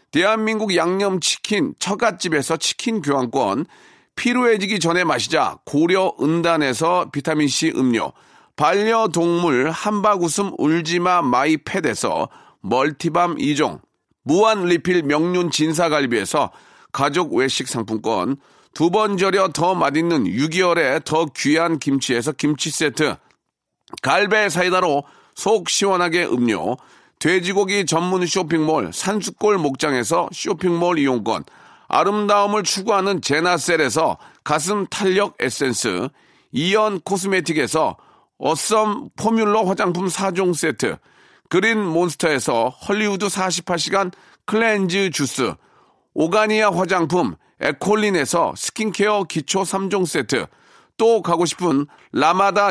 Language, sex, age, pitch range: Korean, male, 40-59, 160-205 Hz